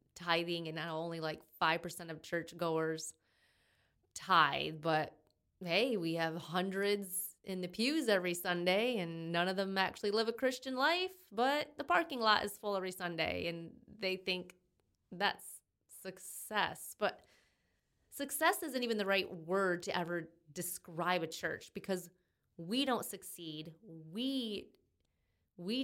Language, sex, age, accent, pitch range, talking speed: English, female, 30-49, American, 170-205 Hz, 135 wpm